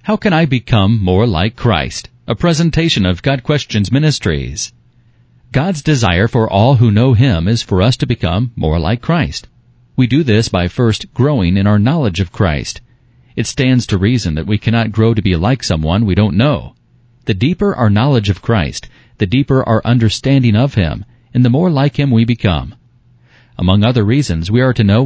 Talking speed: 190 wpm